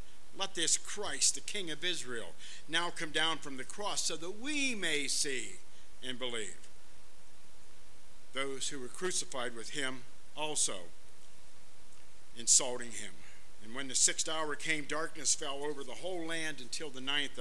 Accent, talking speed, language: American, 150 wpm, English